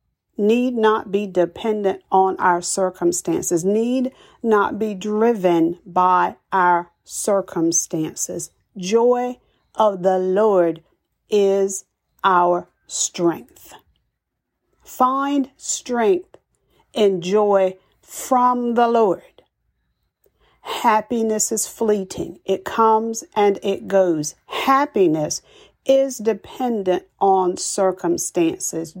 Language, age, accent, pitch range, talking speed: English, 50-69, American, 180-225 Hz, 85 wpm